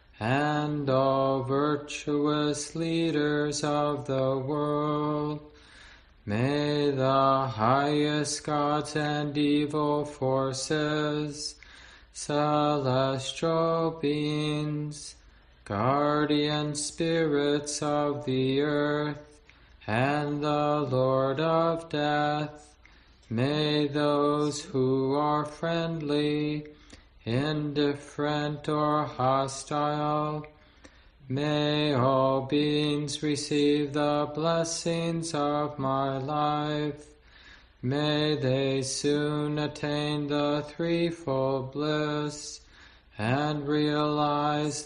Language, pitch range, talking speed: English, 140-150 Hz, 70 wpm